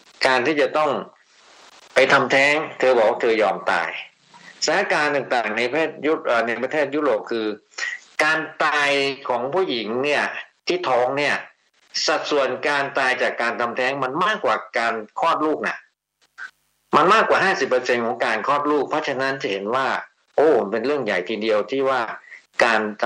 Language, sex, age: Thai, male, 60-79